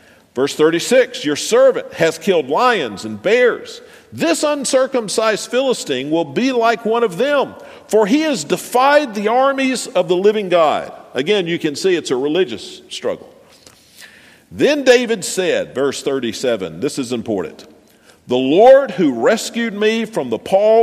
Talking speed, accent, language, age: 150 wpm, American, English, 50-69